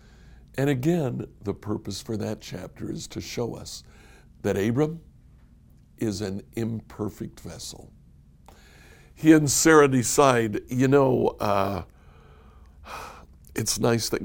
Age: 60-79